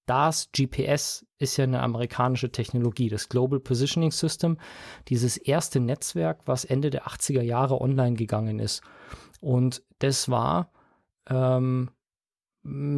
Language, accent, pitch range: German, German, 125-140 Hz